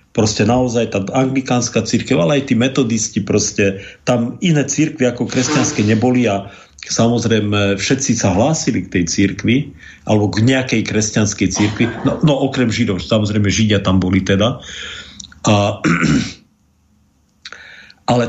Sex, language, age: male, Slovak, 50-69